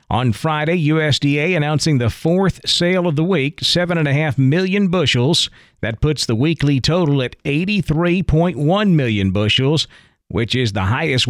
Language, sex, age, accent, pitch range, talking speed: English, male, 40-59, American, 120-155 Hz, 155 wpm